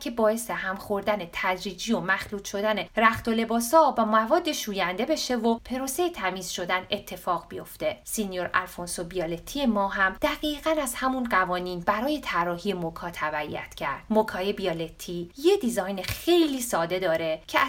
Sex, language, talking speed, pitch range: female, Persian, 145 wpm, 185-265 Hz